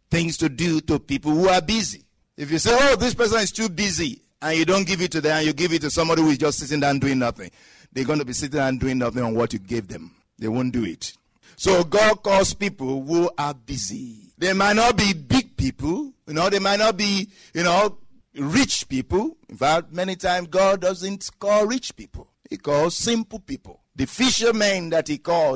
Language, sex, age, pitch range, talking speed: English, male, 60-79, 145-195 Hz, 220 wpm